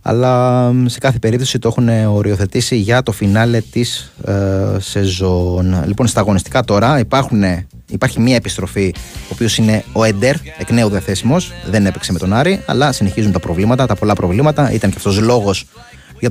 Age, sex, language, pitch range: 20-39, male, Greek, 100-125 Hz